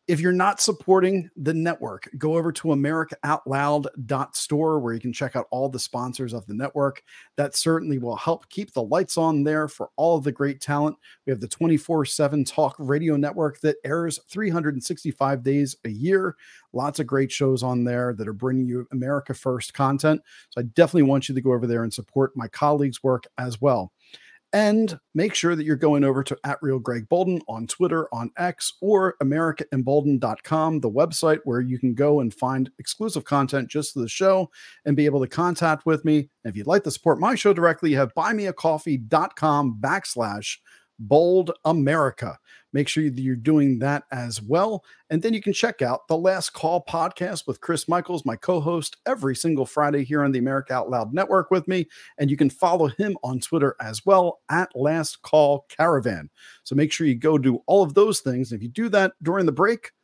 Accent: American